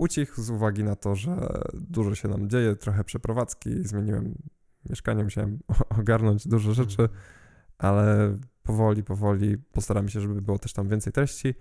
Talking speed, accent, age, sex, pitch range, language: 150 wpm, native, 10-29, male, 105-115 Hz, Polish